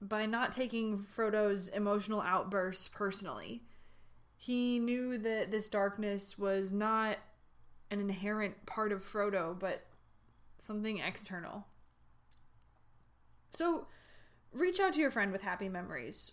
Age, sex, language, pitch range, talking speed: 20-39, female, English, 190-245 Hz, 115 wpm